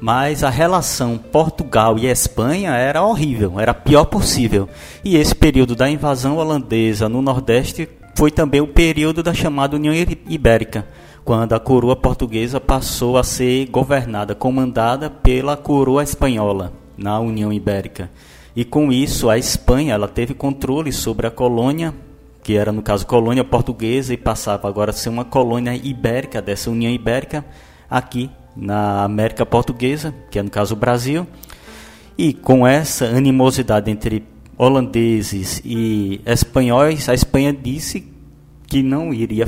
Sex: male